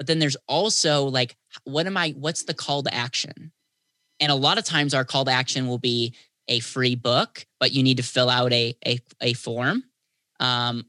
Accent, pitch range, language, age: American, 125-150 Hz, English, 10-29